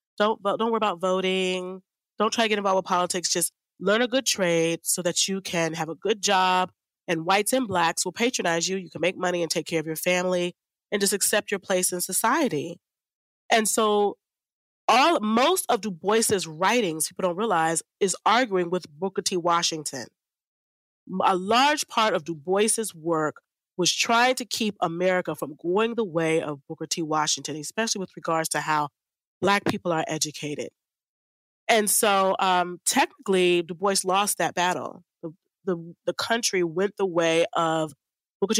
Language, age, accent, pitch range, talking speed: English, 30-49, American, 170-205 Hz, 175 wpm